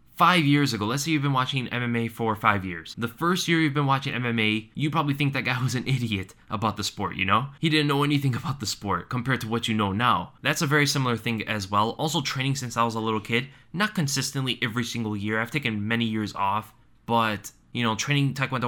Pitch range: 110-135 Hz